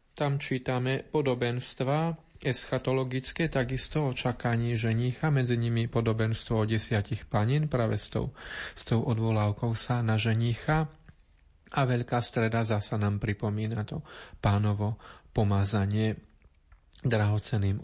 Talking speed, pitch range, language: 105 wpm, 105-130 Hz, Slovak